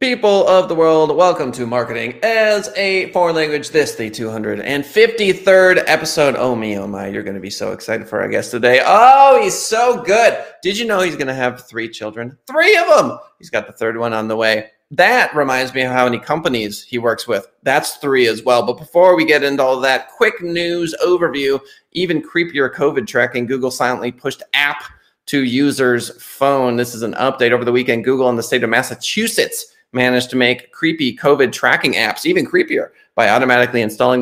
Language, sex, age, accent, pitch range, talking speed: English, male, 30-49, American, 120-170 Hz, 200 wpm